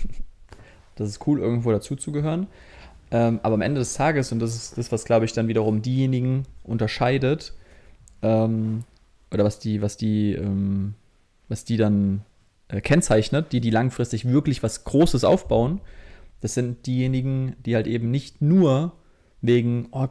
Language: German